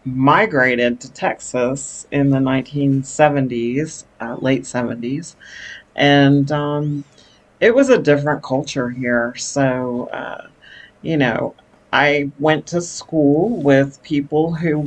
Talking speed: 115 wpm